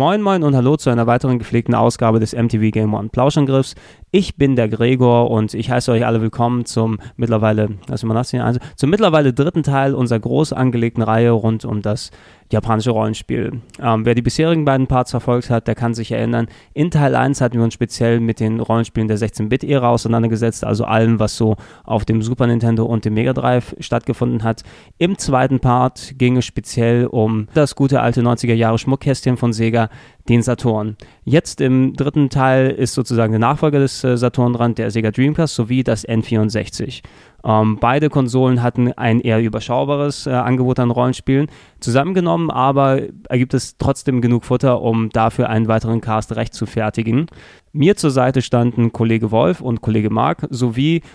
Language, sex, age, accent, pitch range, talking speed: German, male, 20-39, German, 115-130 Hz, 170 wpm